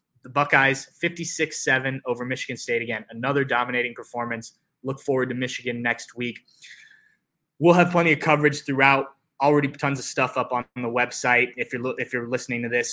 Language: English